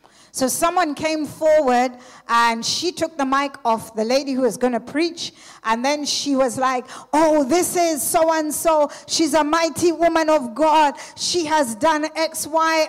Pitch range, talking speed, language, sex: 255-330 Hz, 170 wpm, English, female